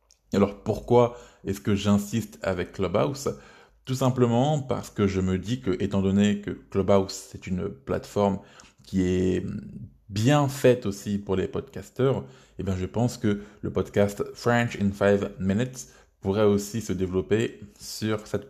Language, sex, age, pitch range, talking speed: French, male, 20-39, 95-120 Hz, 150 wpm